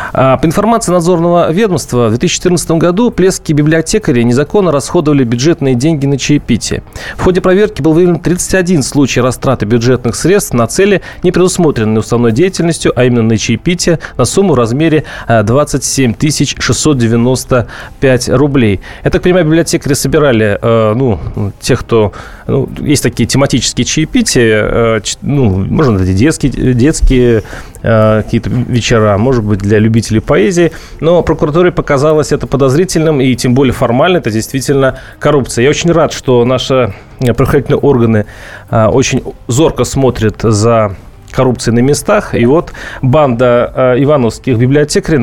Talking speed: 135 wpm